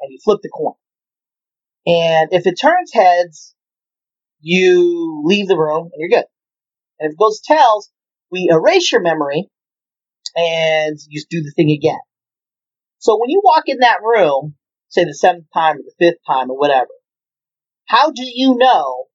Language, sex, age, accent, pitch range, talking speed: English, male, 40-59, American, 160-250 Hz, 165 wpm